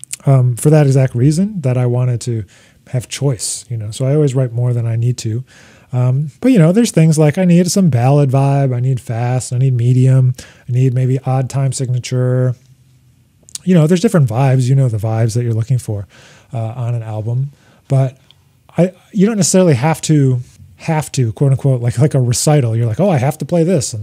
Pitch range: 120-150 Hz